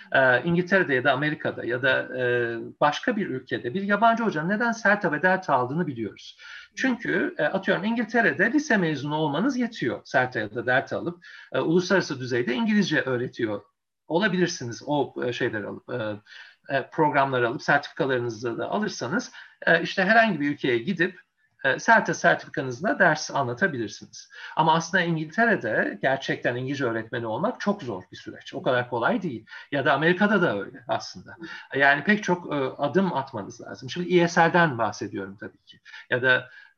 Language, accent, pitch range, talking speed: Turkish, native, 130-190 Hz, 140 wpm